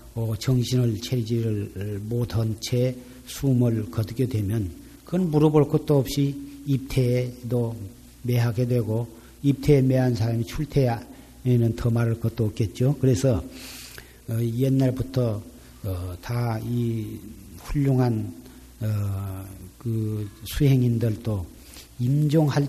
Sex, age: male, 50-69